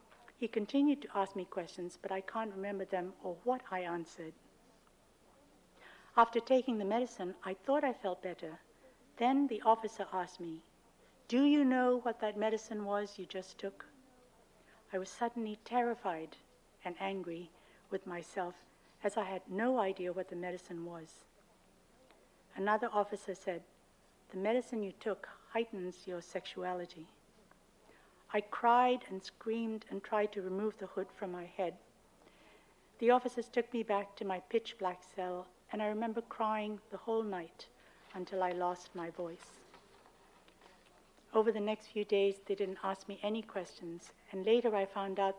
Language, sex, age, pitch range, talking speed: English, female, 60-79, 185-220 Hz, 155 wpm